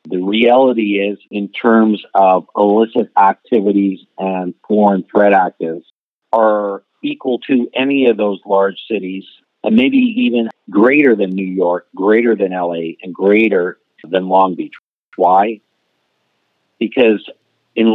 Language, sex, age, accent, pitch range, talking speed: English, male, 50-69, American, 95-110 Hz, 125 wpm